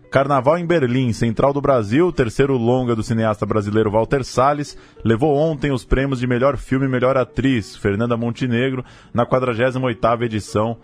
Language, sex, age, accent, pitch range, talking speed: Portuguese, male, 20-39, Brazilian, 105-130 Hz, 155 wpm